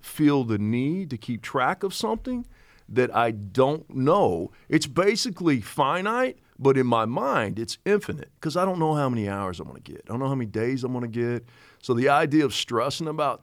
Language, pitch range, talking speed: English, 110-160 Hz, 215 wpm